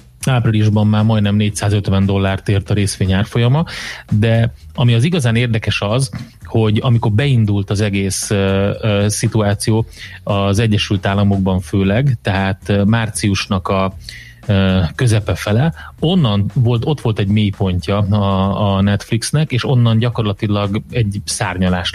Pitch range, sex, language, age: 100-115 Hz, male, Hungarian, 30-49